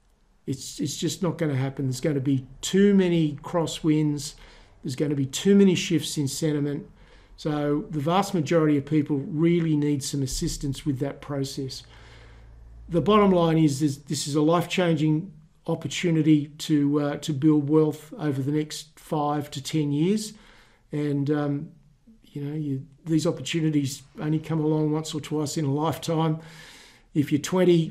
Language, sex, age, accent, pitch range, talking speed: English, male, 50-69, Australian, 145-165 Hz, 165 wpm